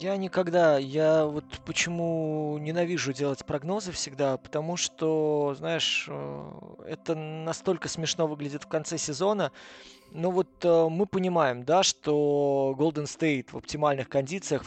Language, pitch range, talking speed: Russian, 140-165 Hz, 125 wpm